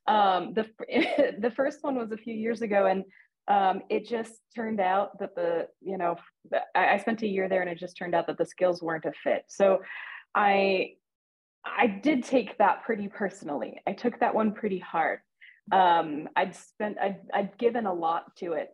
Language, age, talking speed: English, 20-39, 195 wpm